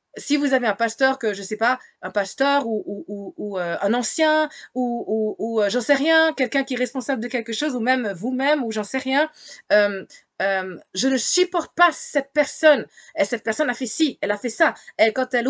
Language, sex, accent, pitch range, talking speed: French, female, French, 210-275 Hz, 235 wpm